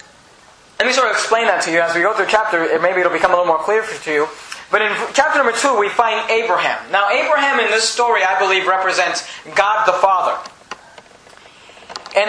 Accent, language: American, English